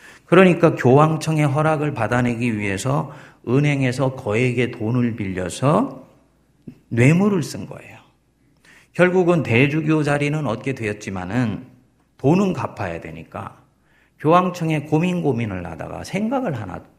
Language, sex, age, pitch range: Korean, male, 40-59, 115-155 Hz